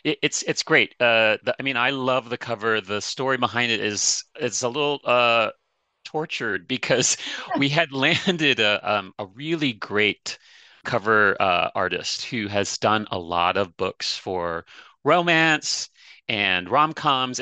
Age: 30-49